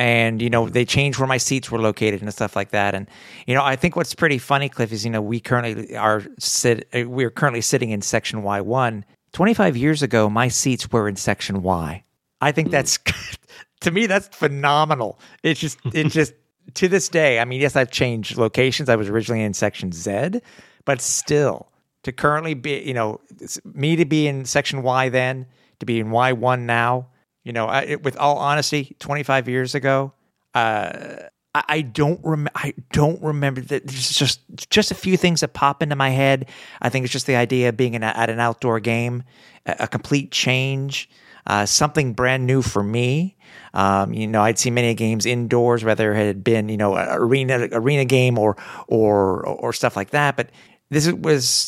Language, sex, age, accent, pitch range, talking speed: English, male, 50-69, American, 115-145 Hz, 205 wpm